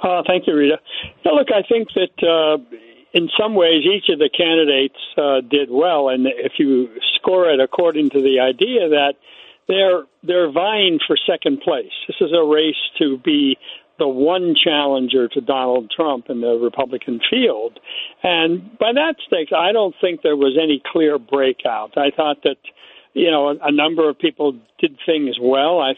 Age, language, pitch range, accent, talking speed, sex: 60-79, English, 140-210 Hz, American, 180 wpm, male